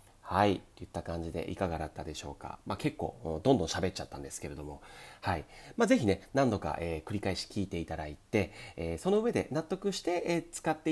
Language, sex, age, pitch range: Japanese, male, 40-59, 85-130 Hz